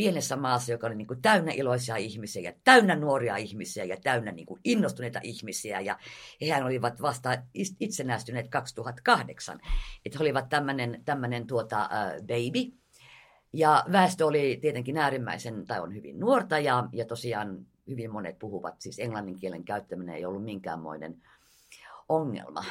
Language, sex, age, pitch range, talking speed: Finnish, female, 50-69, 115-155 Hz, 145 wpm